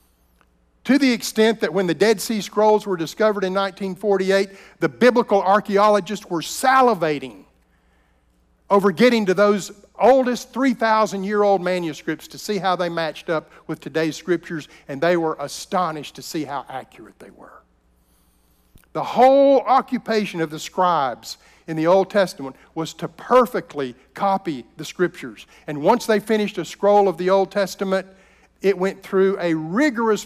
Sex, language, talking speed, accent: male, English, 150 wpm, American